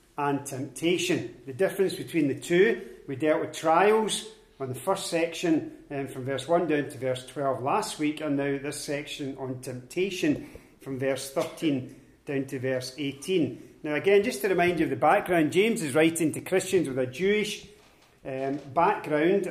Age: 40-59